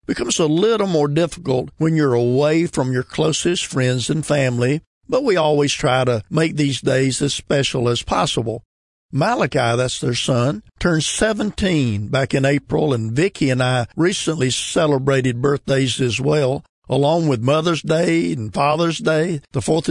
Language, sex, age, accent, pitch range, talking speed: English, male, 50-69, American, 125-160 Hz, 160 wpm